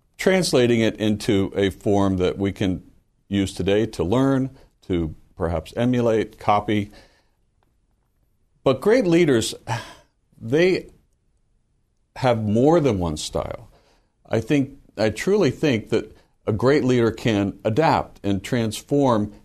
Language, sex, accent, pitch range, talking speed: English, male, American, 95-125 Hz, 115 wpm